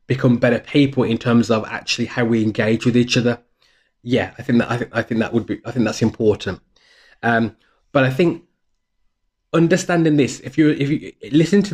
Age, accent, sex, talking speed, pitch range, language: 20-39, British, male, 205 wpm, 115-135 Hz, English